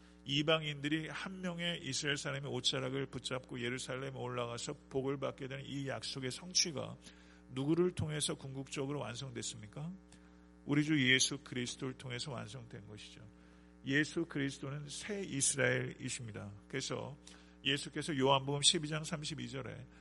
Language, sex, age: Korean, male, 50-69